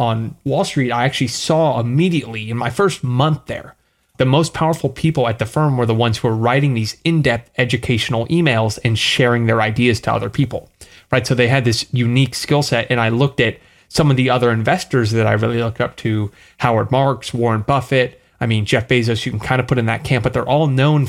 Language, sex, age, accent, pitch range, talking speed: English, male, 30-49, American, 115-130 Hz, 225 wpm